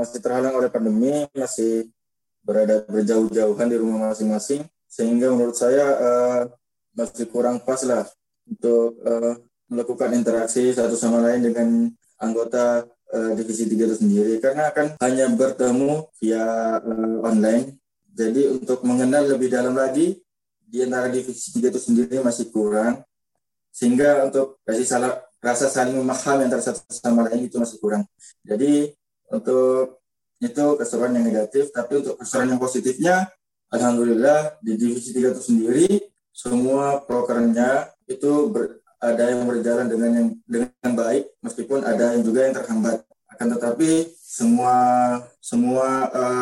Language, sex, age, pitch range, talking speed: Indonesian, male, 20-39, 115-135 Hz, 135 wpm